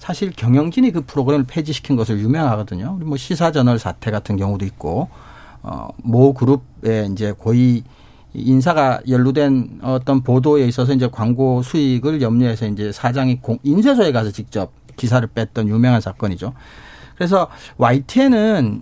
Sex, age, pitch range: male, 40-59, 125-170 Hz